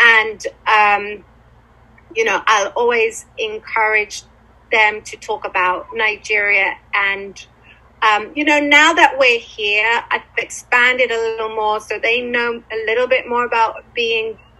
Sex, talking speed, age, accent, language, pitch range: female, 140 wpm, 30-49, British, English, 205-275 Hz